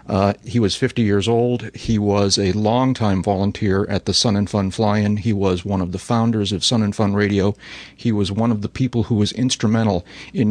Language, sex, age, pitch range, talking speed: English, male, 40-59, 95-110 Hz, 215 wpm